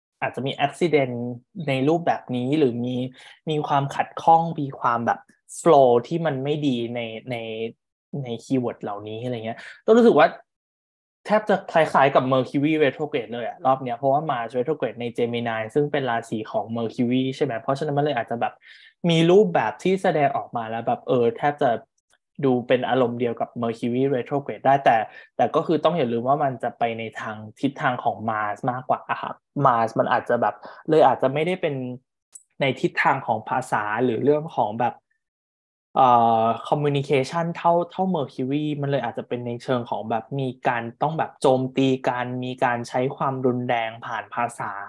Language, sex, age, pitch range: Thai, male, 20-39, 120-150 Hz